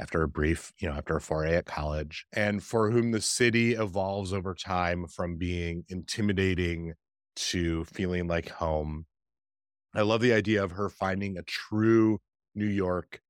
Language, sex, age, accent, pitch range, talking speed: English, male, 30-49, American, 85-105 Hz, 165 wpm